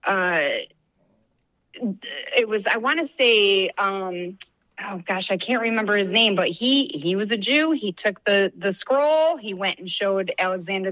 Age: 40-59